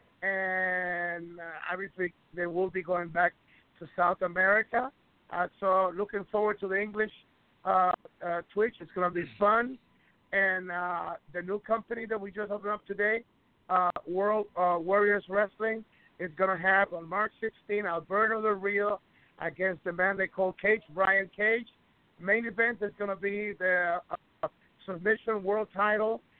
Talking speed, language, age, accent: 165 wpm, English, 50-69, American